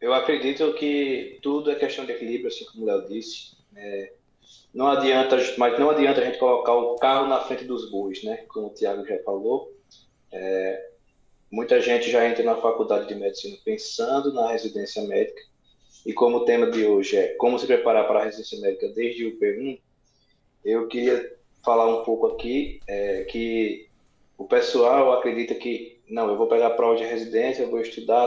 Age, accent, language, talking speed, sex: 20-39, Brazilian, Portuguese, 185 wpm, male